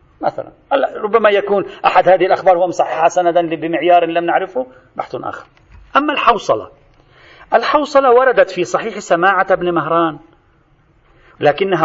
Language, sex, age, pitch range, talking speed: Arabic, male, 40-59, 170-220 Hz, 120 wpm